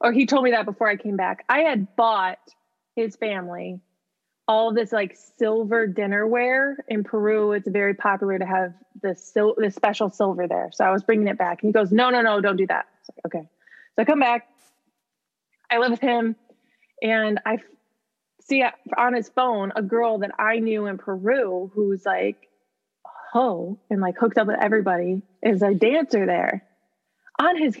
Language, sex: English, female